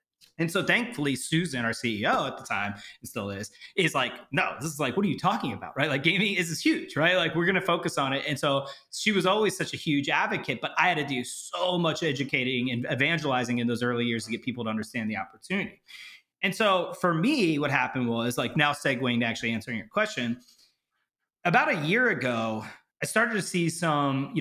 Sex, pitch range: male, 125-185 Hz